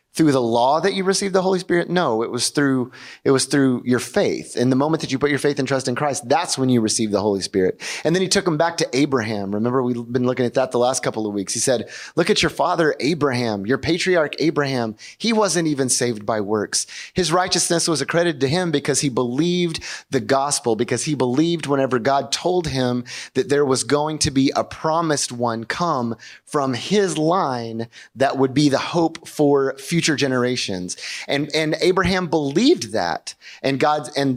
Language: English